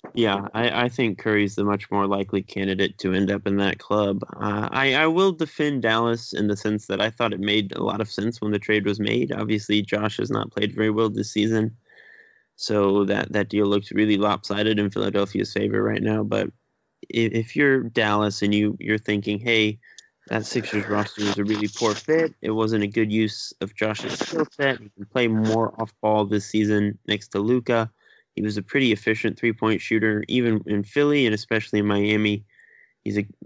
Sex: male